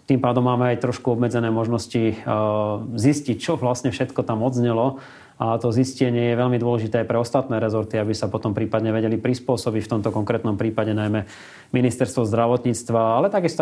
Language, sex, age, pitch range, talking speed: Slovak, male, 30-49, 115-125 Hz, 165 wpm